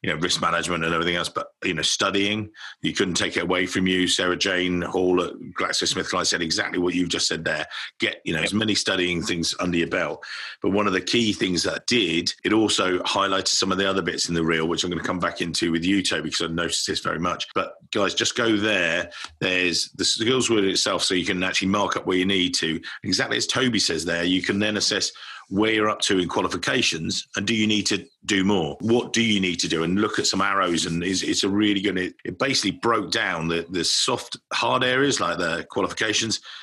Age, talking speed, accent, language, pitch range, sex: 50-69, 240 wpm, British, English, 90-105 Hz, male